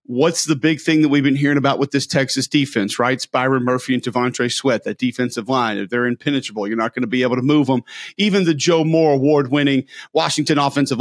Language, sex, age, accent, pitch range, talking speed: English, male, 40-59, American, 125-150 Hz, 230 wpm